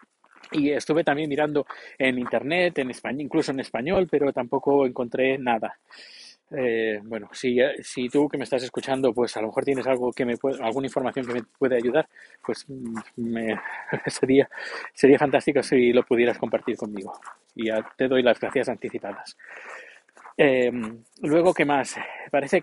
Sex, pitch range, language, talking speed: male, 130-160 Hz, Spanish, 160 wpm